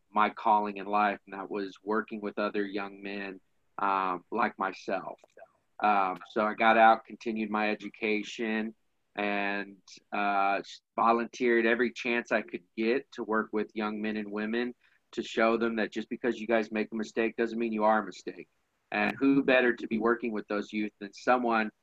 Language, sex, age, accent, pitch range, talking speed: English, male, 40-59, American, 105-115 Hz, 180 wpm